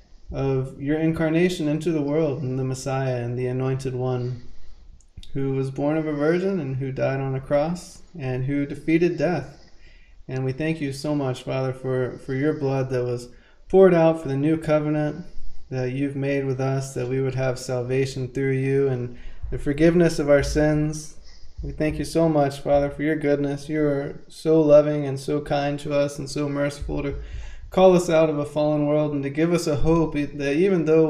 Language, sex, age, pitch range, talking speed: English, male, 20-39, 130-150 Hz, 200 wpm